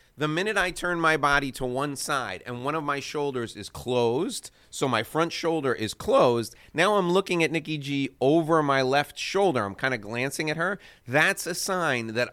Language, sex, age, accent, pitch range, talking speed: English, male, 30-49, American, 125-180 Hz, 205 wpm